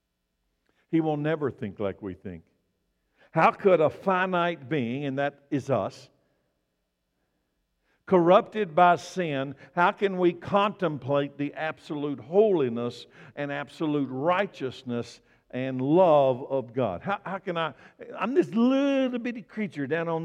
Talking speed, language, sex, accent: 125 wpm, English, male, American